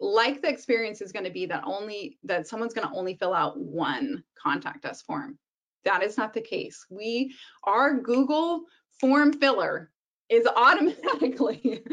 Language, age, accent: English, 20-39, American